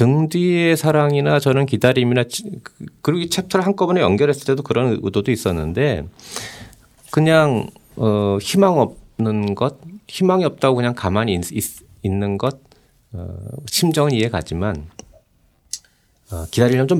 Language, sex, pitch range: Korean, male, 105-160 Hz